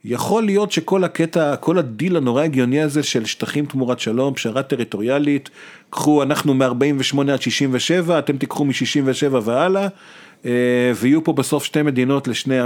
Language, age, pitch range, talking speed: Hebrew, 40-59, 125-155 Hz, 140 wpm